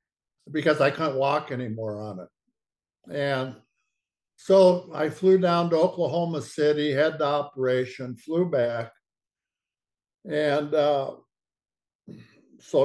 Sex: male